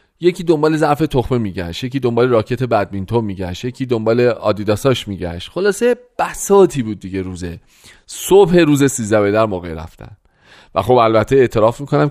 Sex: male